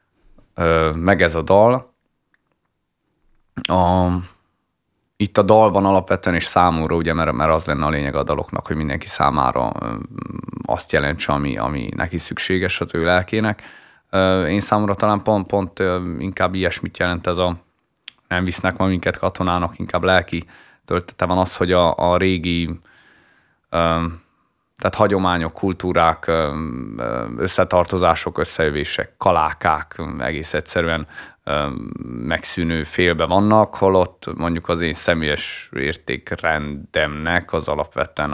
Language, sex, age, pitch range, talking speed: Hungarian, male, 30-49, 80-95 Hz, 120 wpm